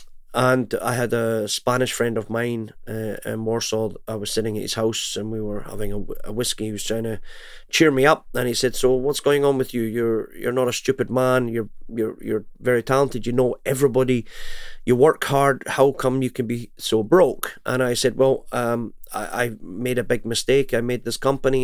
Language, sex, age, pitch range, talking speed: English, male, 30-49, 115-135 Hz, 220 wpm